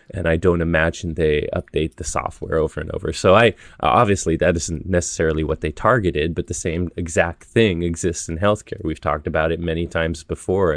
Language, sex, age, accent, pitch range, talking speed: English, male, 30-49, American, 80-95 Hz, 195 wpm